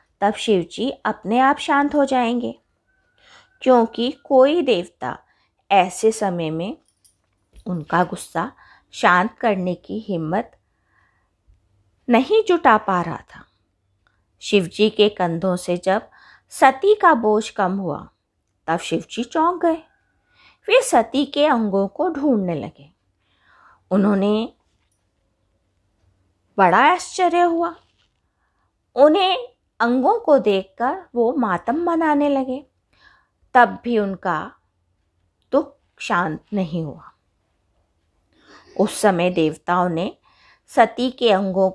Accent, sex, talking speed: native, female, 100 wpm